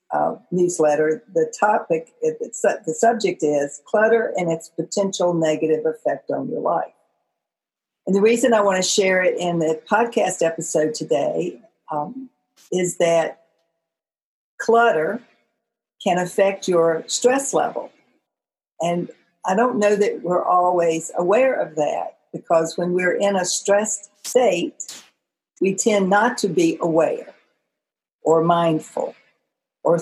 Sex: female